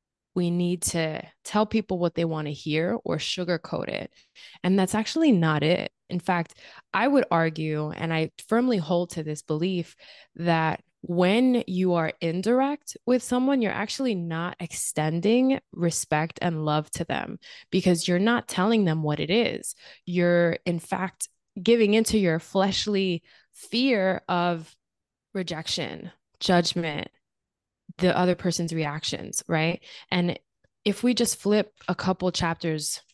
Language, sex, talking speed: English, female, 140 wpm